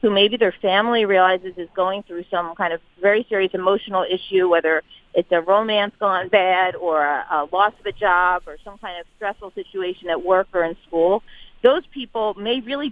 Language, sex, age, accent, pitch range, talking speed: English, female, 40-59, American, 180-210 Hz, 200 wpm